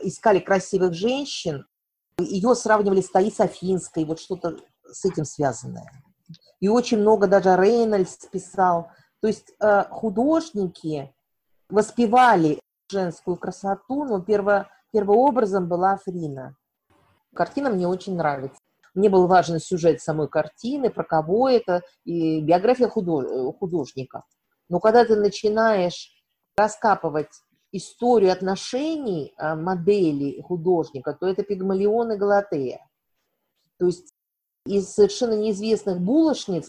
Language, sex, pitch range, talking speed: Russian, female, 170-215 Hz, 115 wpm